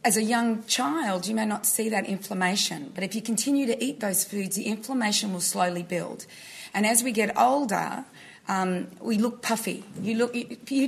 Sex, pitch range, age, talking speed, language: female, 205-265 Hz, 30-49, 190 wpm, English